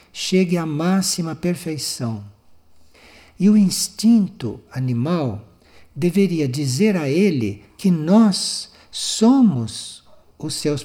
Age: 60-79